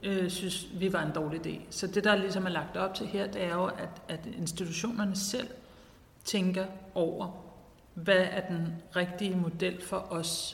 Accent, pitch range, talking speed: native, 170-200 Hz, 170 wpm